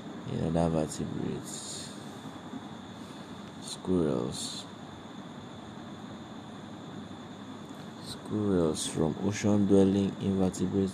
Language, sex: English, male